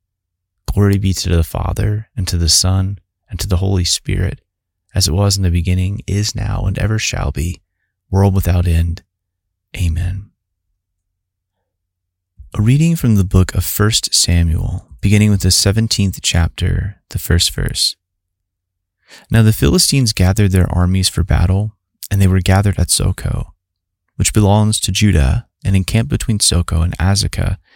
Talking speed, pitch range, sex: 150 wpm, 90-100 Hz, male